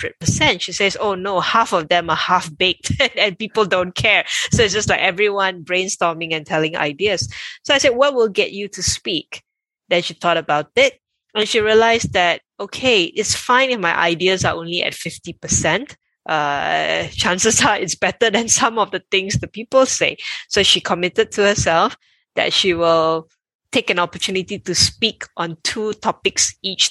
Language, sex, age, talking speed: English, female, 20-39, 180 wpm